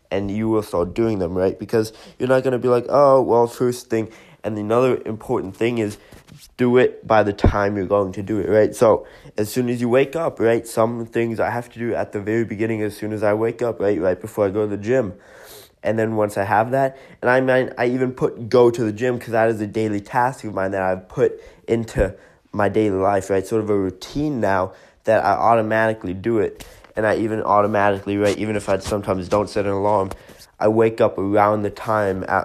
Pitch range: 105-120 Hz